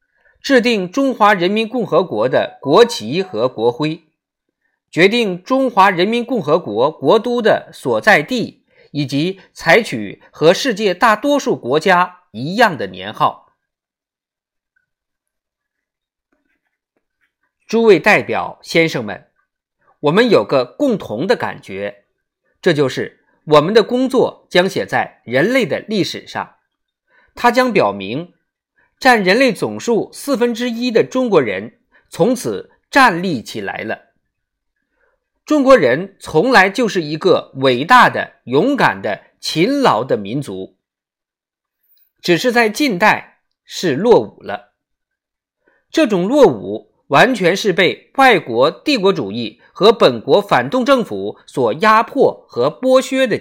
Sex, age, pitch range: male, 50-69, 175-260 Hz